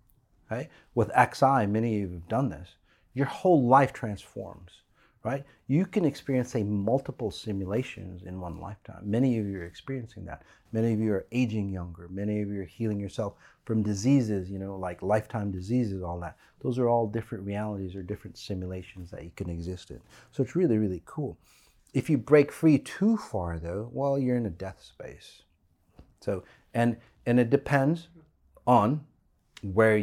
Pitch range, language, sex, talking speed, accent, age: 95-125 Hz, English, male, 175 wpm, American, 40-59